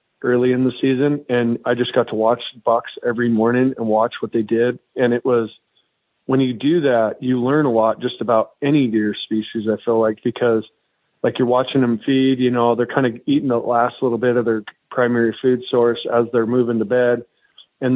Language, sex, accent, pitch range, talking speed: English, male, American, 115-130 Hz, 215 wpm